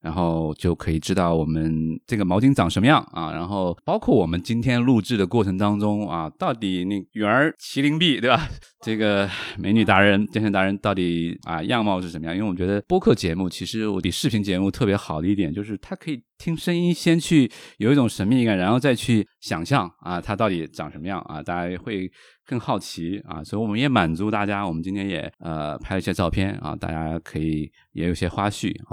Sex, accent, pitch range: male, native, 85-105 Hz